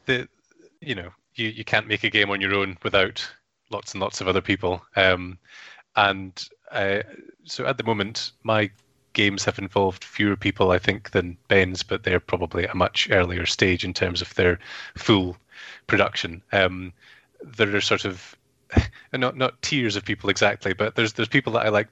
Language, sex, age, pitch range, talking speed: English, male, 20-39, 95-110 Hz, 185 wpm